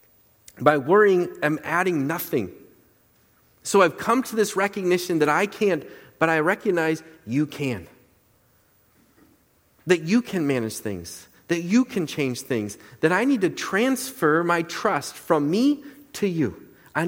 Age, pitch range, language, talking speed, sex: 40-59, 125-190 Hz, English, 145 wpm, male